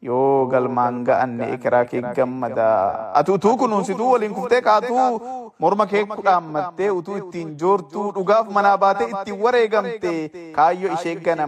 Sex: male